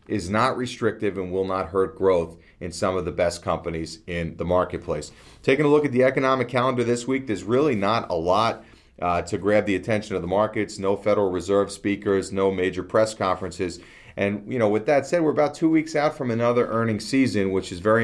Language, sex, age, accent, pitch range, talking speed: English, male, 40-59, American, 90-115 Hz, 215 wpm